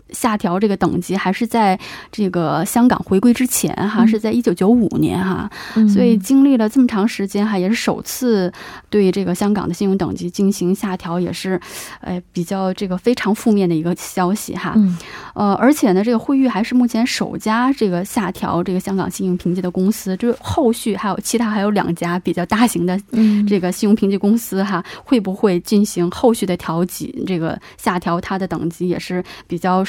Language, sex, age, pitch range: Korean, female, 20-39, 180-220 Hz